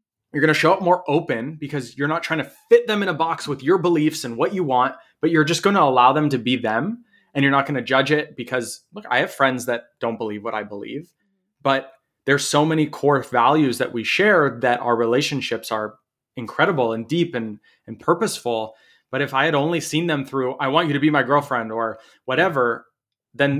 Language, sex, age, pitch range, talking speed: English, male, 20-39, 120-155 Hz, 225 wpm